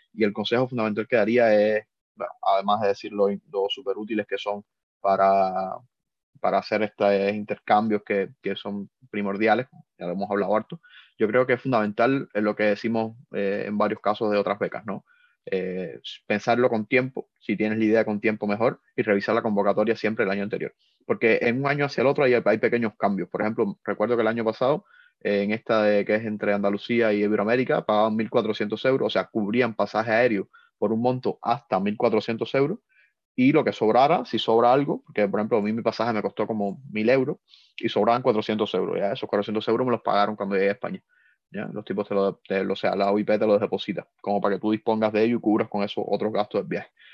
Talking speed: 220 wpm